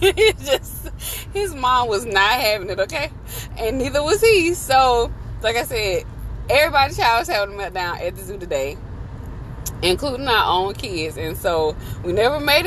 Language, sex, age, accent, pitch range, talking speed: English, female, 20-39, American, 120-185 Hz, 160 wpm